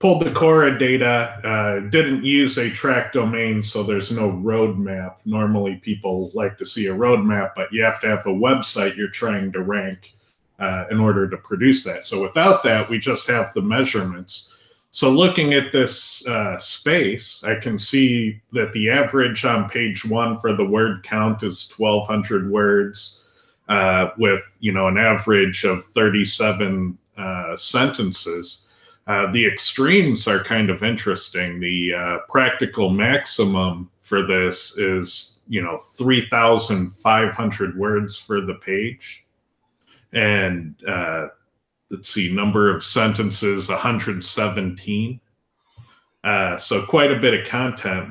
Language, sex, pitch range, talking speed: English, male, 95-115 Hz, 150 wpm